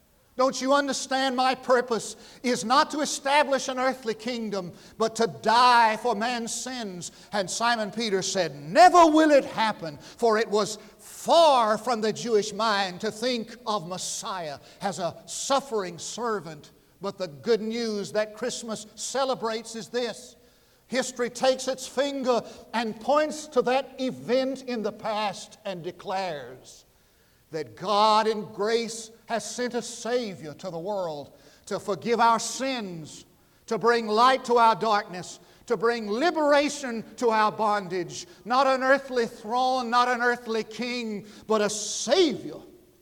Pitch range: 200-245 Hz